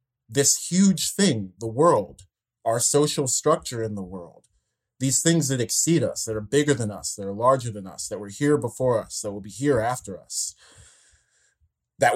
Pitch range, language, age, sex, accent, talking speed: 105-135 Hz, English, 30-49, male, American, 190 wpm